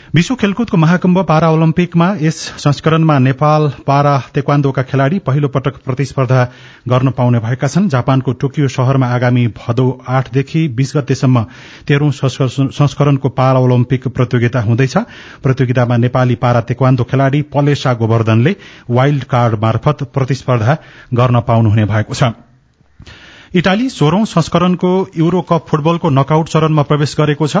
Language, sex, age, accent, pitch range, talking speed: English, male, 30-49, Indian, 125-145 Hz, 100 wpm